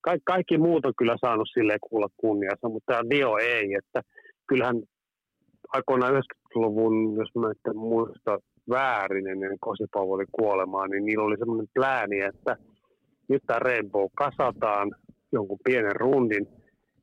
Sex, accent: male, native